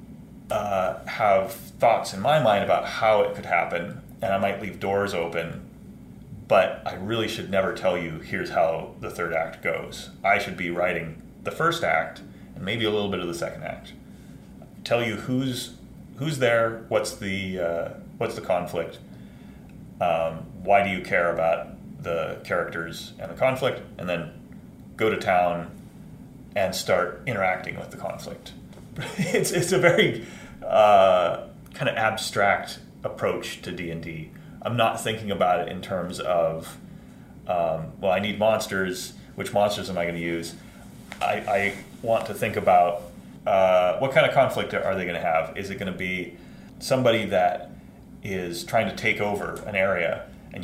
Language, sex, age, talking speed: English, male, 30-49, 165 wpm